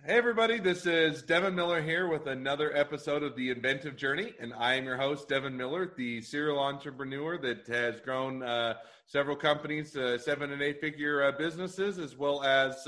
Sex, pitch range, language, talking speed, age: male, 125-145 Hz, English, 185 wpm, 30-49